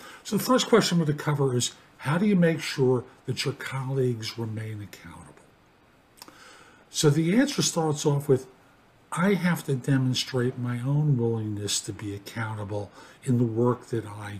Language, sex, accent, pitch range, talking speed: English, male, American, 125-160 Hz, 165 wpm